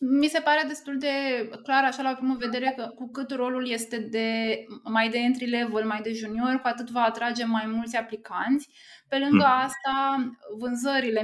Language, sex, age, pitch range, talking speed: Romanian, female, 20-39, 225-260 Hz, 175 wpm